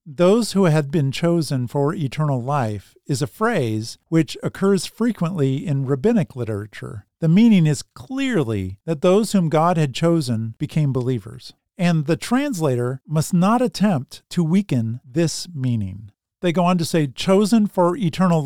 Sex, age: male, 50-69